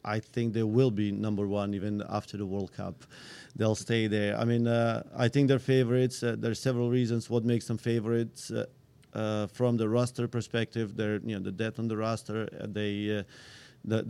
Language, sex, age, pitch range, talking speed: English, male, 40-59, 110-125 Hz, 210 wpm